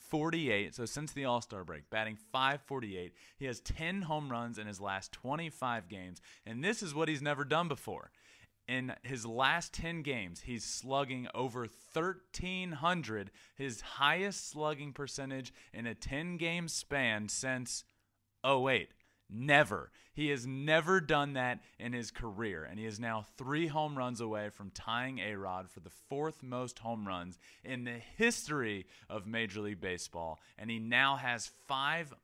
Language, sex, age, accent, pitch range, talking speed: English, male, 30-49, American, 105-140 Hz, 155 wpm